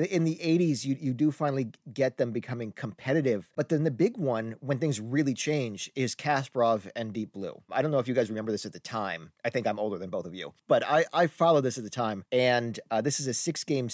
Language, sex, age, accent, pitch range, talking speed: English, male, 40-59, American, 115-145 Hz, 250 wpm